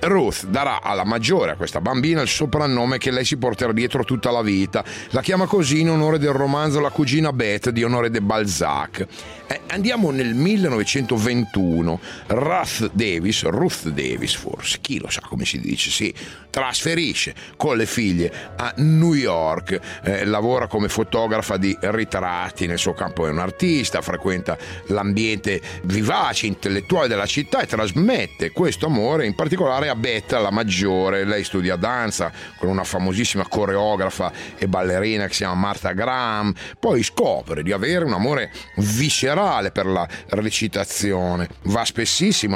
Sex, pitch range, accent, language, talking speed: male, 95-125 Hz, native, Italian, 155 wpm